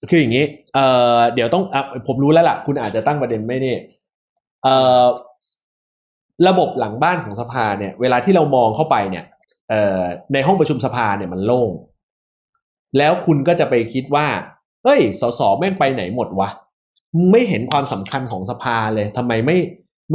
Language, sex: Thai, male